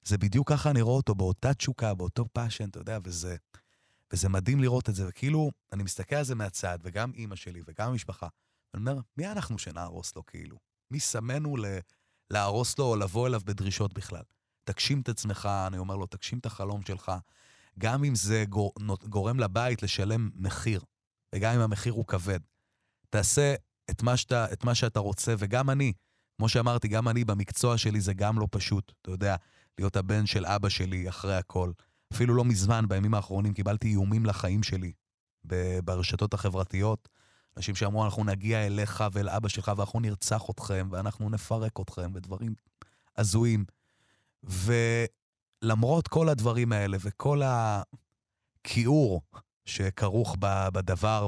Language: Hebrew